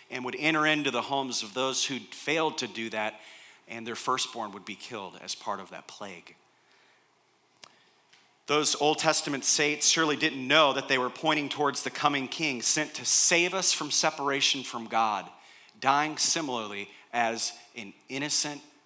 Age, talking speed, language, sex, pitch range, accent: 30-49, 165 wpm, English, male, 120-155 Hz, American